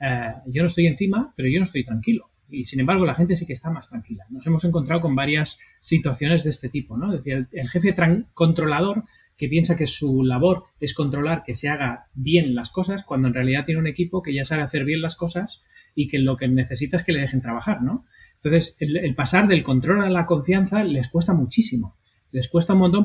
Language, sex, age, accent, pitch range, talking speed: Spanish, male, 30-49, Spanish, 135-185 Hz, 230 wpm